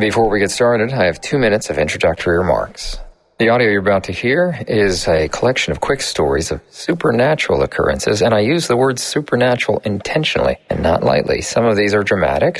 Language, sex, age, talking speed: English, male, 40-59, 195 wpm